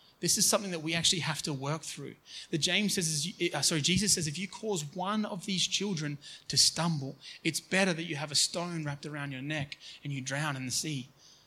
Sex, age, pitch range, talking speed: male, 30-49, 145-175 Hz, 220 wpm